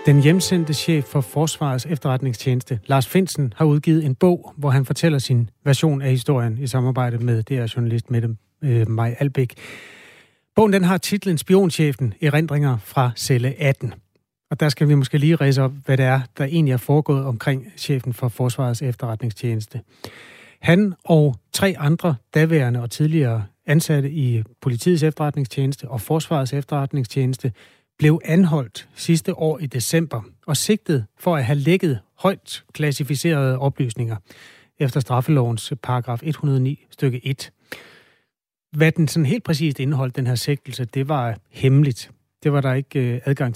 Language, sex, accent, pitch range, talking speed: Danish, male, native, 125-155 Hz, 150 wpm